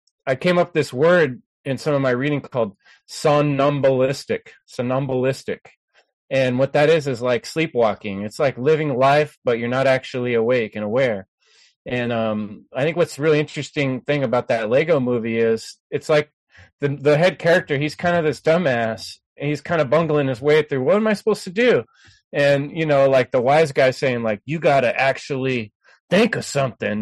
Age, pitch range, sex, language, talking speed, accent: 30-49, 125-155 Hz, male, English, 190 wpm, American